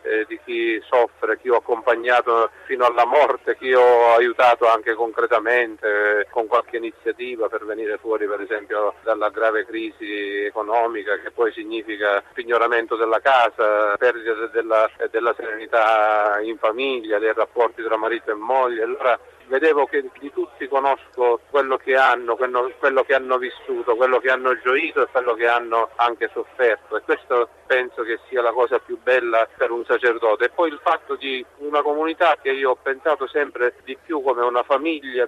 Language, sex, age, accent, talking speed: Italian, male, 50-69, native, 165 wpm